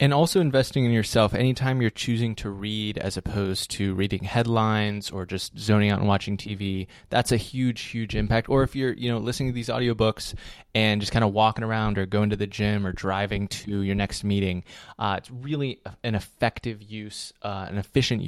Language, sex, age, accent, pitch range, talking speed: English, male, 20-39, American, 100-120 Hz, 205 wpm